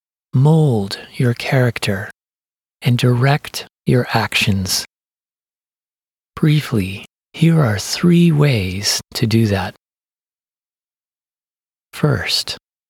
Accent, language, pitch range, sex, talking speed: American, English, 110-155 Hz, male, 75 wpm